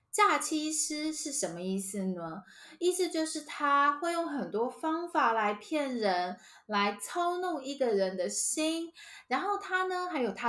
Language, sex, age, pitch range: Chinese, female, 10-29, 190-315 Hz